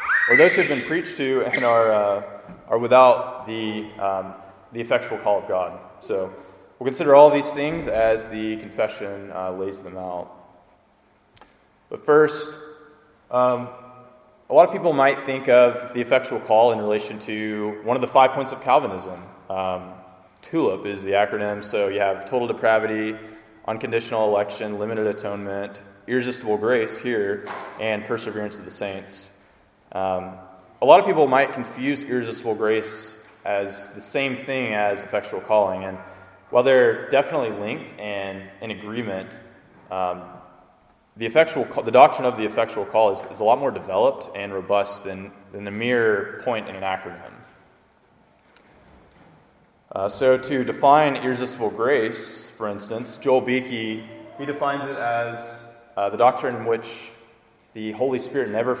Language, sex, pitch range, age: English, male, 100-125 Hz, 20-39